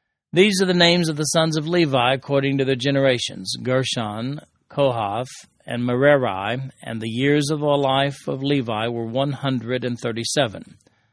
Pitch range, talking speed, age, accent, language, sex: 120-150 Hz, 145 wpm, 40-59, American, English, male